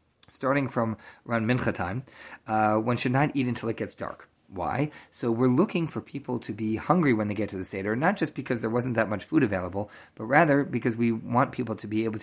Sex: male